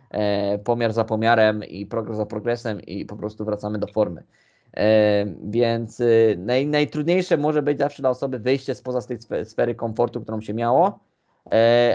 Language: Polish